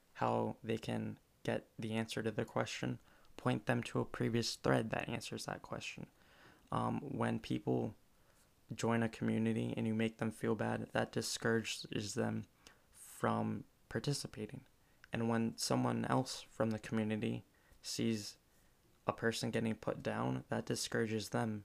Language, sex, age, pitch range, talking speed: English, male, 20-39, 105-115 Hz, 145 wpm